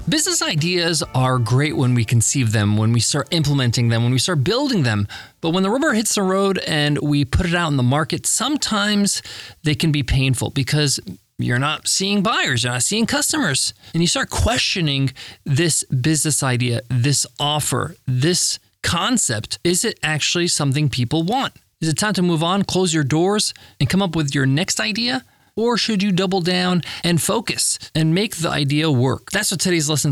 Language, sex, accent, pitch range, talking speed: English, male, American, 130-185 Hz, 190 wpm